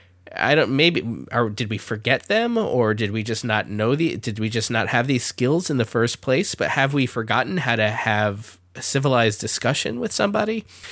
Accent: American